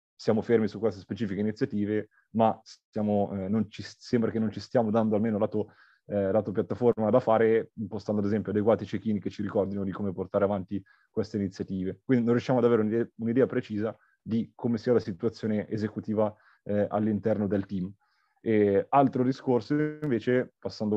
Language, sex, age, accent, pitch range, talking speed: Italian, male, 30-49, native, 100-115 Hz, 175 wpm